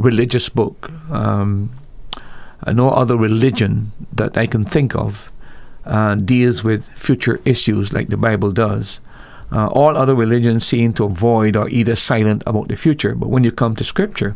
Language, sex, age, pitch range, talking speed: English, male, 50-69, 105-125 Hz, 165 wpm